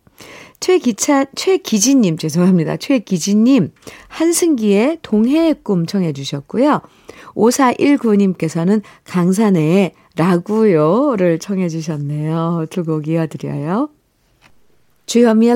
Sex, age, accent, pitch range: female, 50-69, native, 170-230 Hz